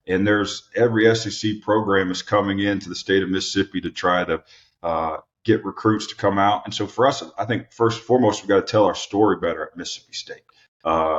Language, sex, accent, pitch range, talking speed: English, male, American, 90-100 Hz, 220 wpm